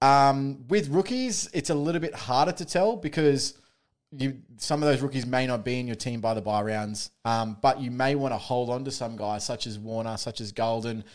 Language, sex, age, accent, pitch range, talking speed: English, male, 20-39, Australian, 115-140 Hz, 230 wpm